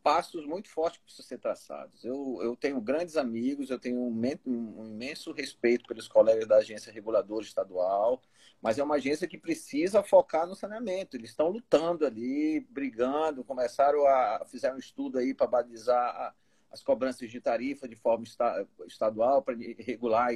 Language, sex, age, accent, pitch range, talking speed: Portuguese, male, 40-59, Brazilian, 120-170 Hz, 170 wpm